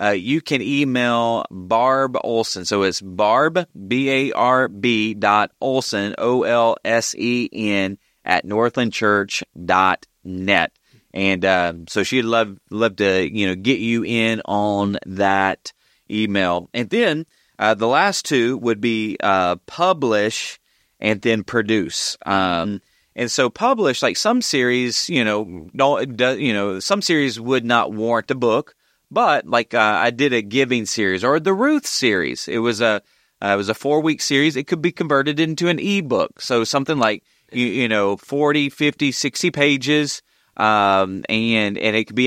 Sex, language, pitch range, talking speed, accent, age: male, English, 105-130 Hz, 165 wpm, American, 30-49